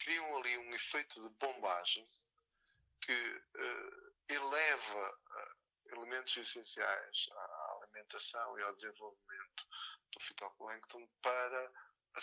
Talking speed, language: 95 wpm, Portuguese